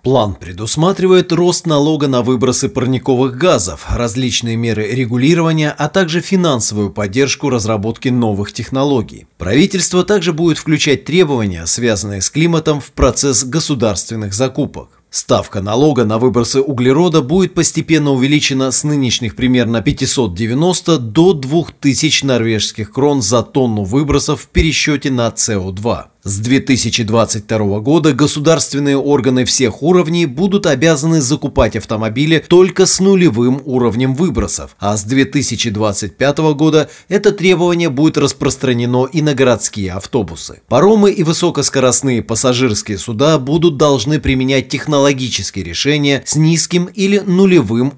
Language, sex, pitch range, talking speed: Russian, male, 115-155 Hz, 120 wpm